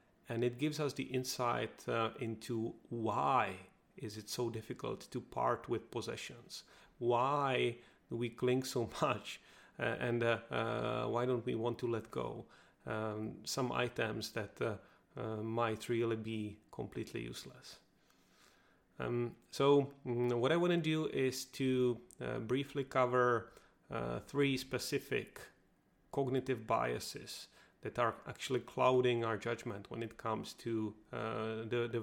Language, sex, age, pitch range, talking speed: English, male, 30-49, 115-130 Hz, 140 wpm